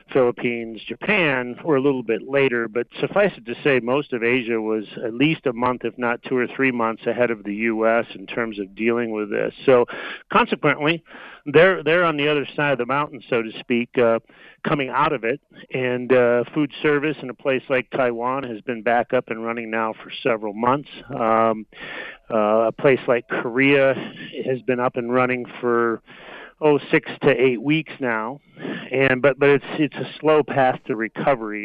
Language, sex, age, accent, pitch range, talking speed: English, male, 40-59, American, 115-135 Hz, 195 wpm